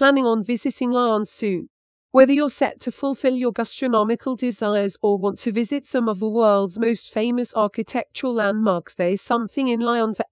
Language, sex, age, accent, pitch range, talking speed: English, female, 40-59, British, 210-250 Hz, 180 wpm